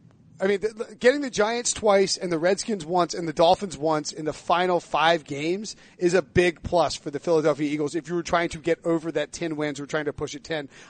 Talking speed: 235 wpm